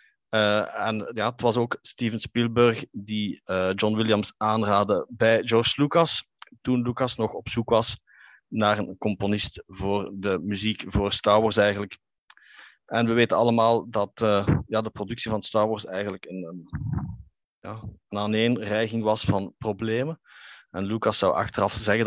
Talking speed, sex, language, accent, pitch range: 160 wpm, male, Dutch, Dutch, 105-120 Hz